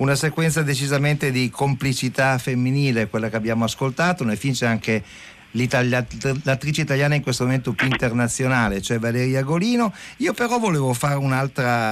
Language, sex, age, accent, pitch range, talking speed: Italian, male, 50-69, native, 105-135 Hz, 140 wpm